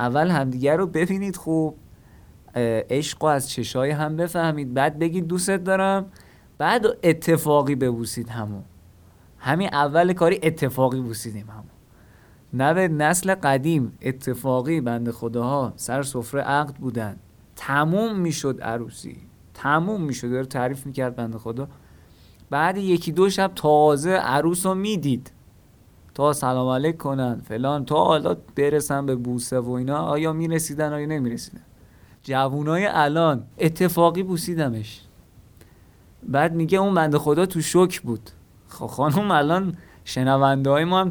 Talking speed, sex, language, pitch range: 125 wpm, male, Persian, 120-165 Hz